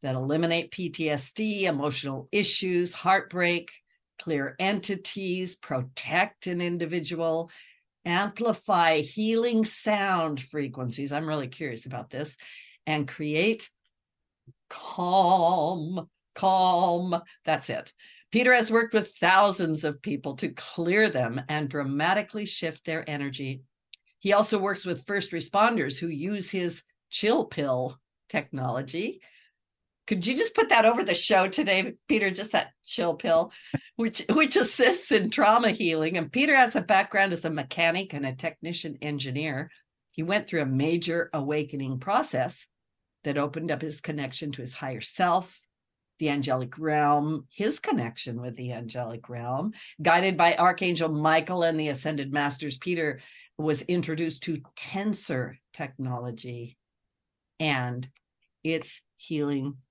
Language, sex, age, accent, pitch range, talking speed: English, female, 60-79, American, 140-190 Hz, 125 wpm